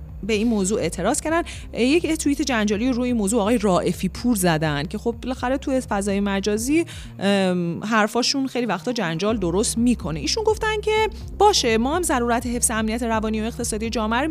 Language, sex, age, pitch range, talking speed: Persian, female, 30-49, 200-280 Hz, 170 wpm